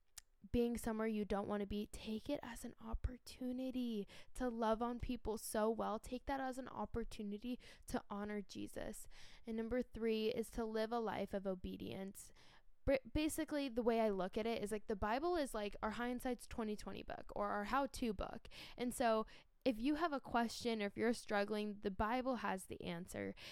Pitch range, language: 200-235 Hz, English